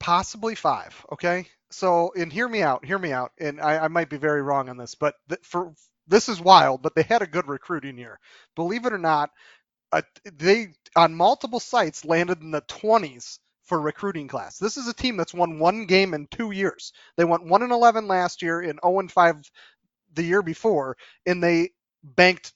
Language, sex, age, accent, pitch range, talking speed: English, male, 30-49, American, 155-200 Hz, 205 wpm